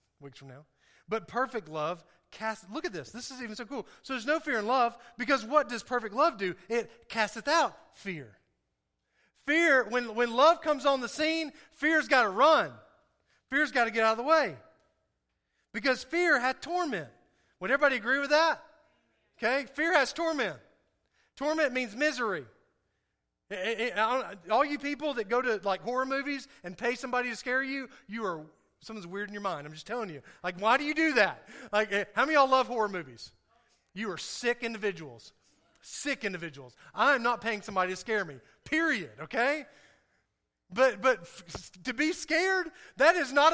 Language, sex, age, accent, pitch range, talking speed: English, male, 40-59, American, 215-295 Hz, 185 wpm